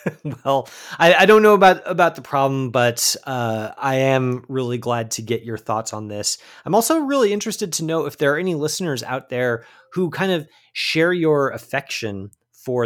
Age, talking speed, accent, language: 30-49, 190 wpm, American, English